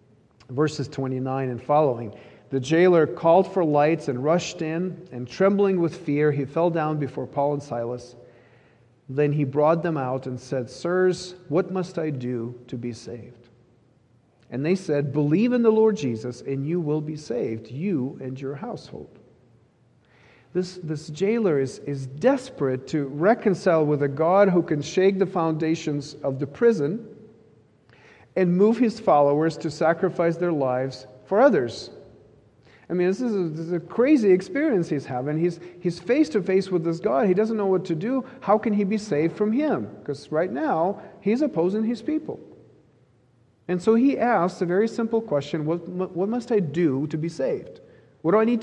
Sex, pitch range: male, 135-185 Hz